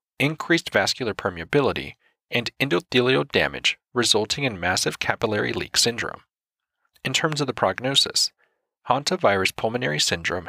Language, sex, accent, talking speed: English, male, American, 120 wpm